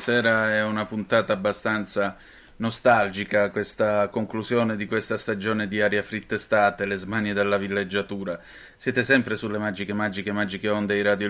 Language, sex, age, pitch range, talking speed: Italian, male, 30-49, 105-115 Hz, 145 wpm